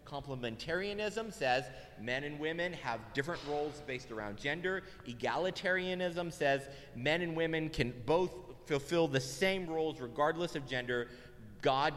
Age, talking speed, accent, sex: 30-49, 130 wpm, American, male